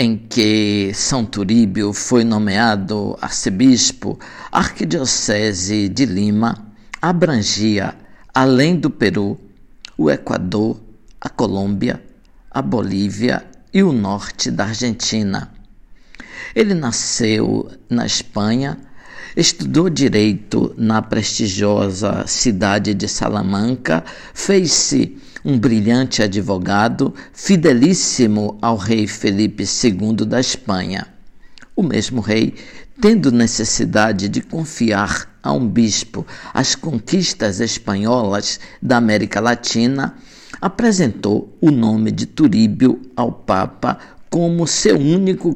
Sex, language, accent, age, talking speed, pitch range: male, Portuguese, Brazilian, 60-79, 95 wpm, 105-130 Hz